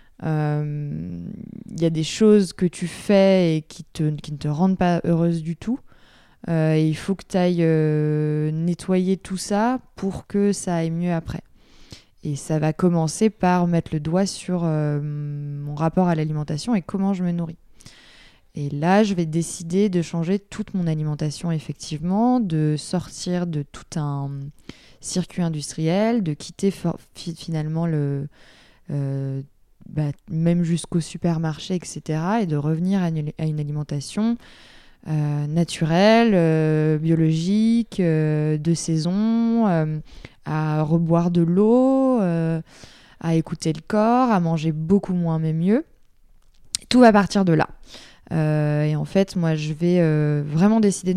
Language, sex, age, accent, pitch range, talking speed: French, female, 20-39, French, 155-190 Hz, 150 wpm